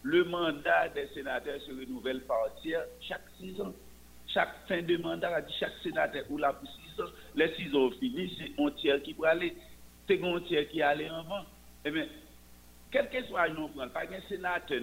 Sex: male